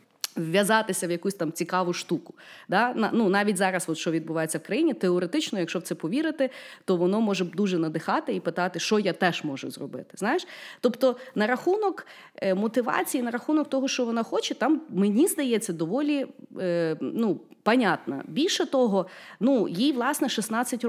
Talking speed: 160 wpm